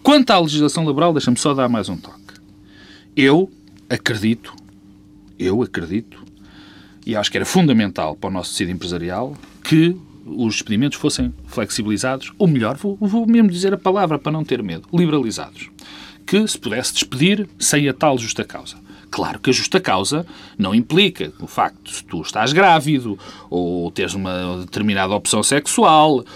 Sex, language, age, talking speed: male, Portuguese, 40-59, 160 wpm